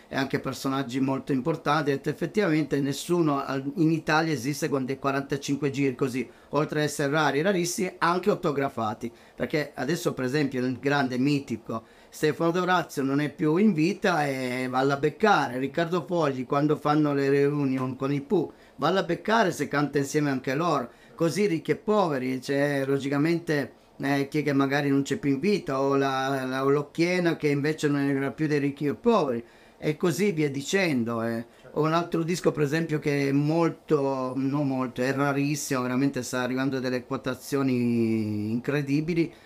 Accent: native